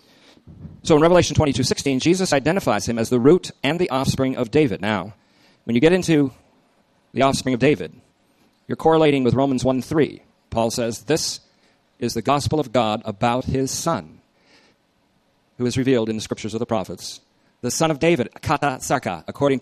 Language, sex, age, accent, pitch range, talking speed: English, male, 40-59, American, 110-140 Hz, 170 wpm